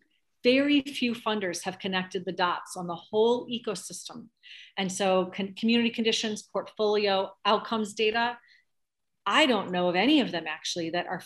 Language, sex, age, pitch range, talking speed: English, female, 40-59, 180-220 Hz, 150 wpm